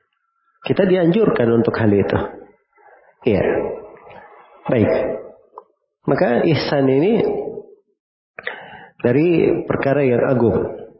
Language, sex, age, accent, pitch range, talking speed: Indonesian, male, 40-59, native, 120-160 Hz, 80 wpm